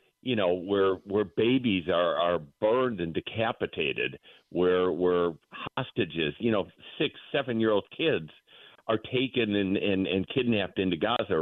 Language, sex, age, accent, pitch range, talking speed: English, male, 50-69, American, 95-125 Hz, 145 wpm